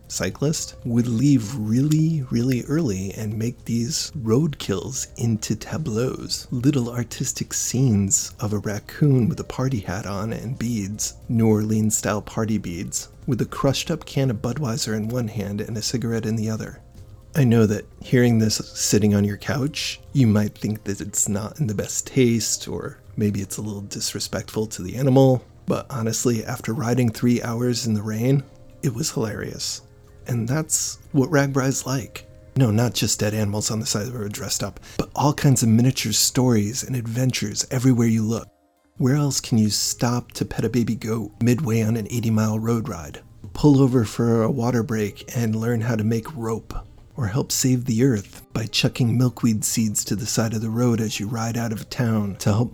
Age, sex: 30-49, male